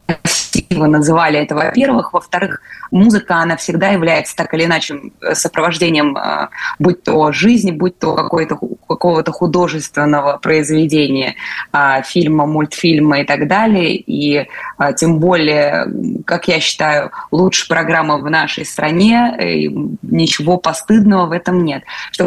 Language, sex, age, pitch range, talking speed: Russian, female, 20-39, 155-180 Hz, 120 wpm